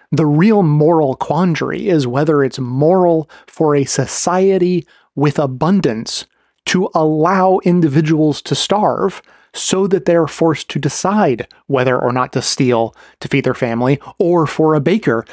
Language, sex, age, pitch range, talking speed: English, male, 30-49, 135-165 Hz, 145 wpm